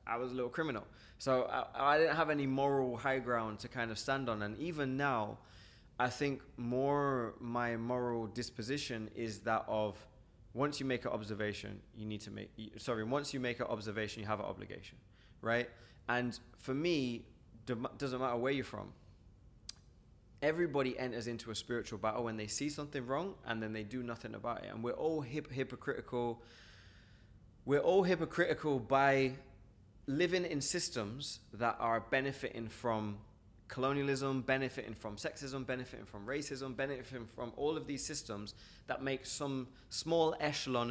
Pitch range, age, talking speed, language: 110-135 Hz, 20-39, 165 wpm, English